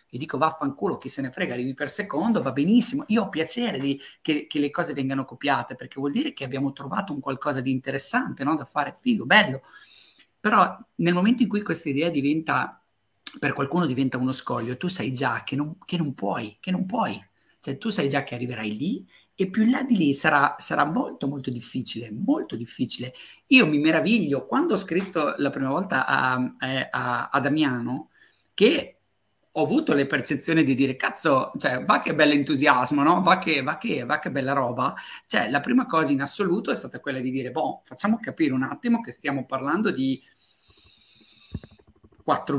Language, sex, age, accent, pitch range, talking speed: Italian, male, 50-69, native, 135-180 Hz, 195 wpm